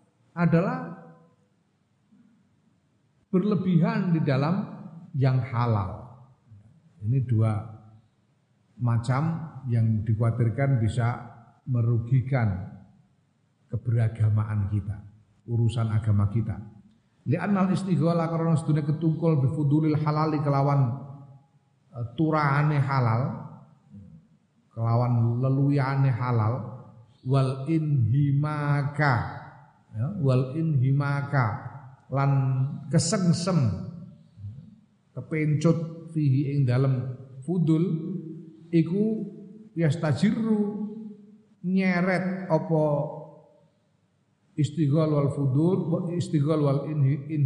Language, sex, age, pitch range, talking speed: Indonesian, male, 50-69, 120-160 Hz, 70 wpm